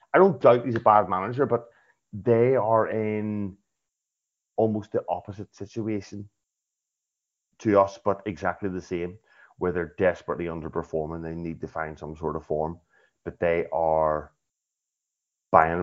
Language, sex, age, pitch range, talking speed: English, male, 30-49, 90-115 Hz, 140 wpm